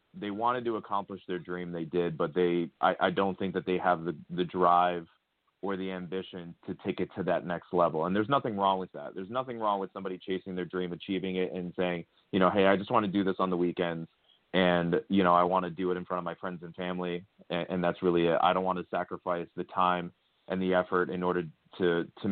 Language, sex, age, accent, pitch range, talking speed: English, male, 30-49, American, 85-95 Hz, 255 wpm